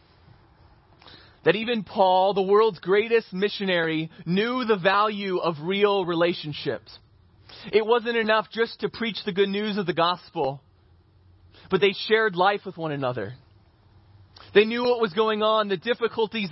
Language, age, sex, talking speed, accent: English, 20-39, male, 145 wpm, American